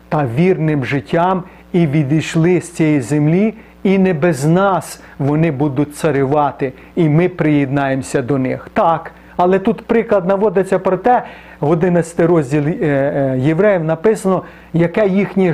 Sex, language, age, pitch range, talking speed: male, Ukrainian, 40-59, 150-200 Hz, 130 wpm